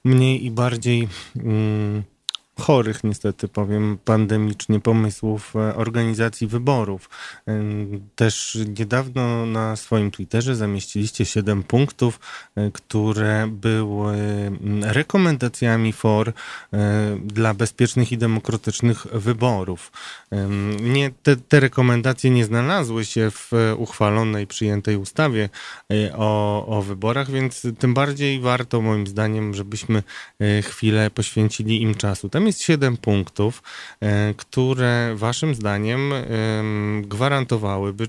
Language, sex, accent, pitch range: Polish, male, native, 105-120 Hz